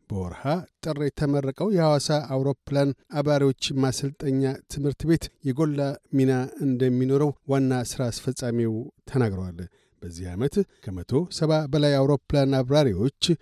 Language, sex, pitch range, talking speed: Amharic, male, 130-150 Hz, 100 wpm